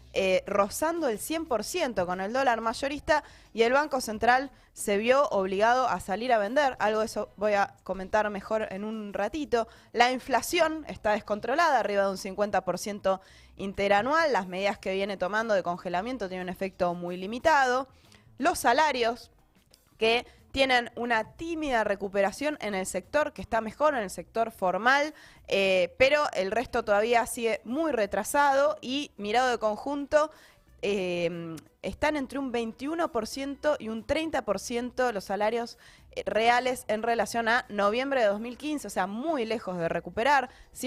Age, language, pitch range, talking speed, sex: 20-39, Spanish, 200-265 Hz, 150 wpm, female